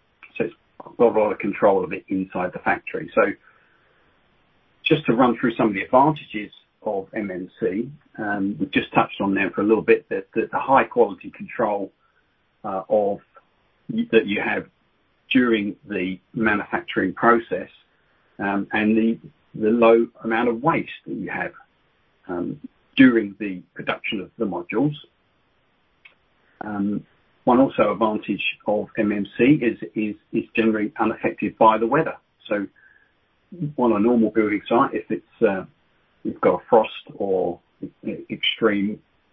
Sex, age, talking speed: male, 40-59, 140 wpm